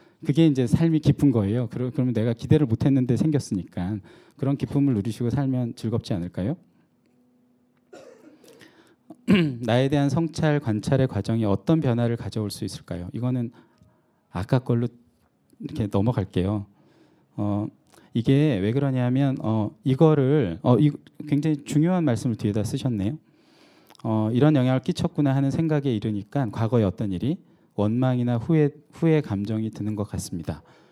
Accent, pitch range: native, 105-140 Hz